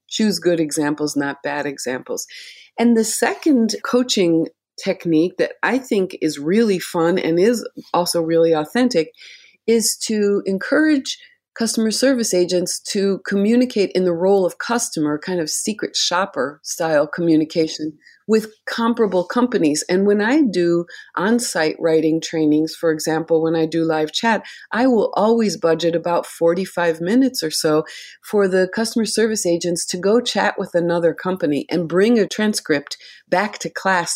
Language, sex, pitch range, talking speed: English, female, 165-225 Hz, 150 wpm